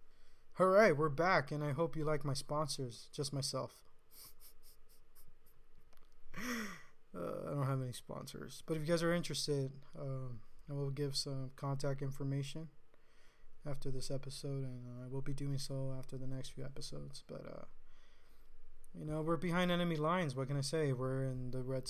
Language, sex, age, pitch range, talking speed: English, male, 20-39, 135-150 Hz, 175 wpm